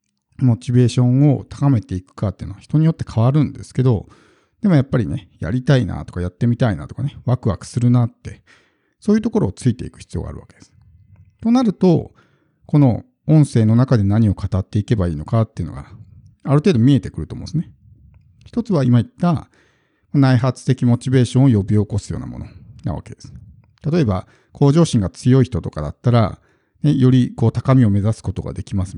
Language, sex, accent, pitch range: Japanese, male, native, 100-140 Hz